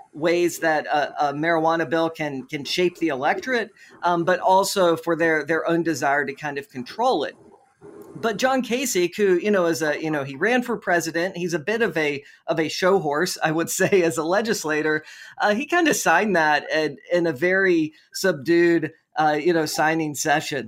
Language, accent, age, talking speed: English, American, 40-59, 200 wpm